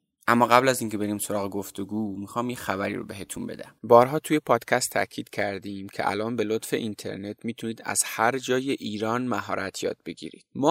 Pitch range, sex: 105-130 Hz, male